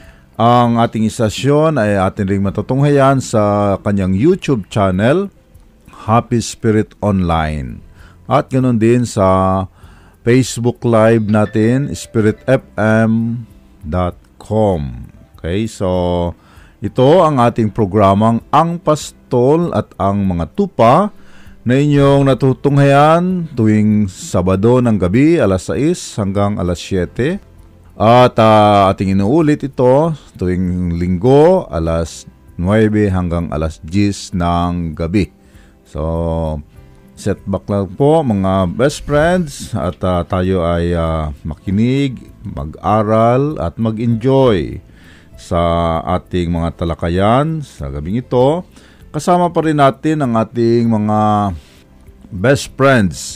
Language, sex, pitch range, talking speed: Filipino, male, 90-120 Hz, 105 wpm